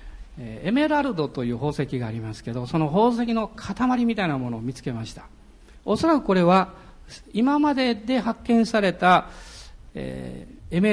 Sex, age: male, 50-69